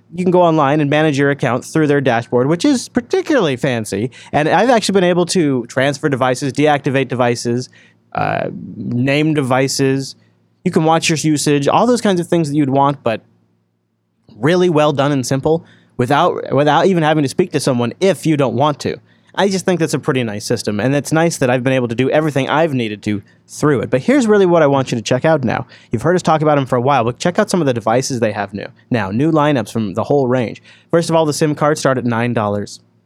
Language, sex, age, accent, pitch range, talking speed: English, male, 30-49, American, 125-160 Hz, 235 wpm